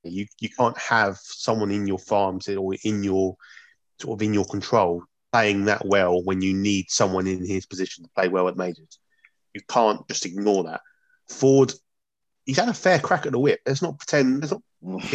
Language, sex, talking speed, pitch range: English, male, 195 wpm, 100-135 Hz